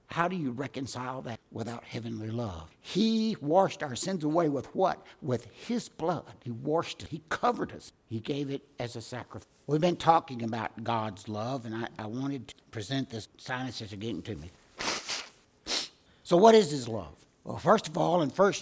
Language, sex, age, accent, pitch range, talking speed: English, male, 60-79, American, 120-165 Hz, 185 wpm